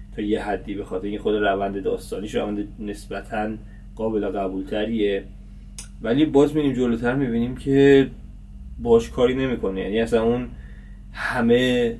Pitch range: 100-135 Hz